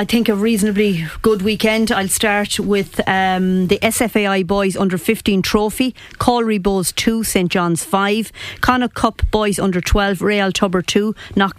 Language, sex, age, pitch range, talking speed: English, female, 40-59, 190-215 Hz, 155 wpm